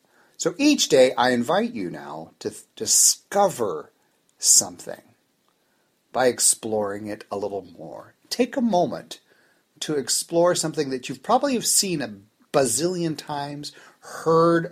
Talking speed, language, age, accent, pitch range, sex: 120 wpm, English, 40-59, American, 120-185 Hz, male